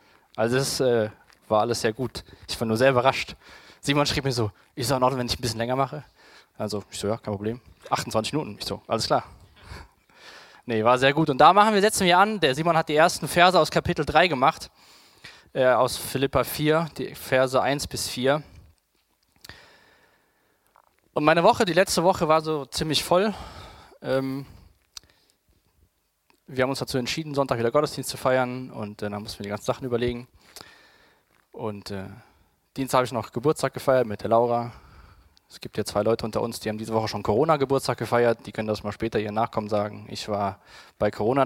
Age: 20-39